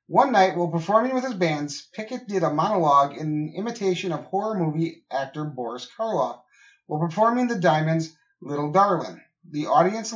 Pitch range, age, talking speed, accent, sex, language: 160-215 Hz, 30-49, 160 wpm, American, male, English